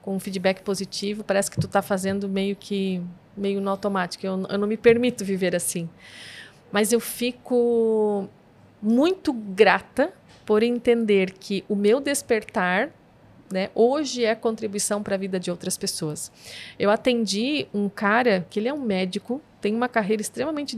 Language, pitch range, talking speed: Portuguese, 190-235 Hz, 160 wpm